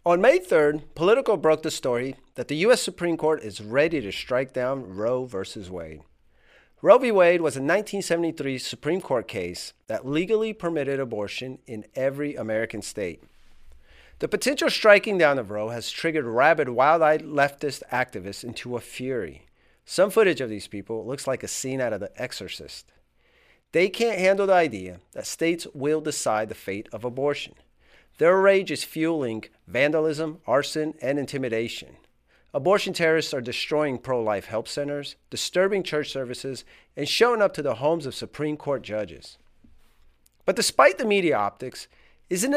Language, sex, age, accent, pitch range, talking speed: English, male, 40-59, American, 110-170 Hz, 160 wpm